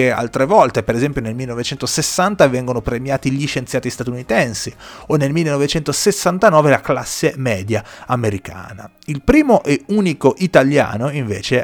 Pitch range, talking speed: 105-150 Hz, 125 wpm